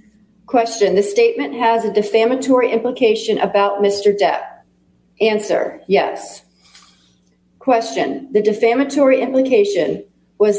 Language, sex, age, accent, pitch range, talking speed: English, female, 40-59, American, 200-245 Hz, 95 wpm